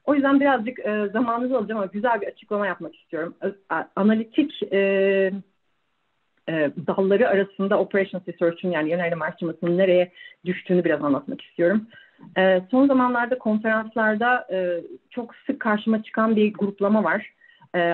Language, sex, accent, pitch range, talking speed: Turkish, female, native, 180-240 Hz, 140 wpm